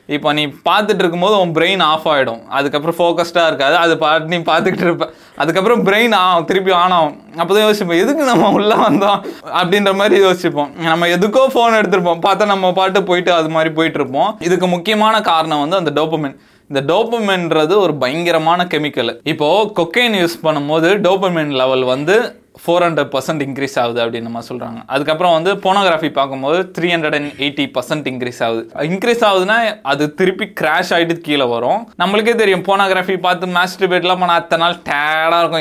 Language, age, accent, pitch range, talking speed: Tamil, 20-39, native, 145-185 Hz, 165 wpm